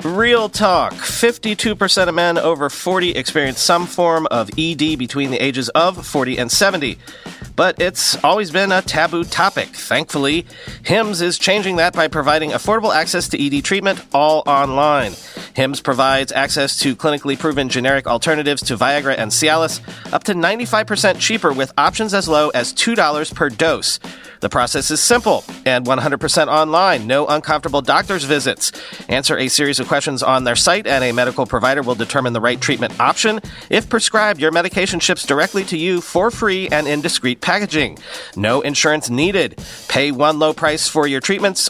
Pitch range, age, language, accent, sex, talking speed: 140-185 Hz, 40-59, English, American, male, 170 wpm